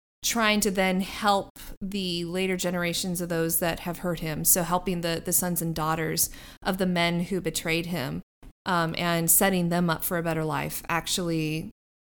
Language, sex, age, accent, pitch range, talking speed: English, female, 20-39, American, 175-210 Hz, 180 wpm